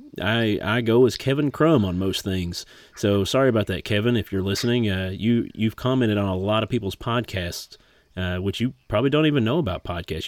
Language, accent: English, American